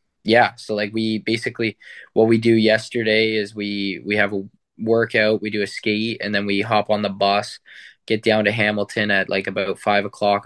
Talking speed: 200 wpm